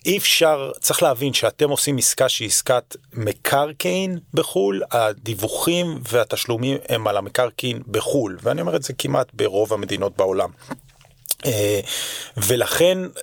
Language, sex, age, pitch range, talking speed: Hebrew, male, 40-59, 110-150 Hz, 120 wpm